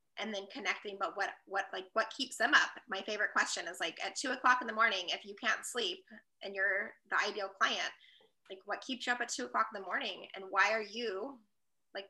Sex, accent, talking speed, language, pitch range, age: female, American, 235 wpm, English, 195-235 Hz, 20-39